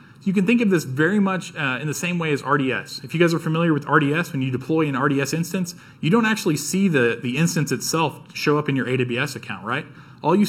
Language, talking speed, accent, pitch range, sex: English, 250 wpm, American, 125-155 Hz, male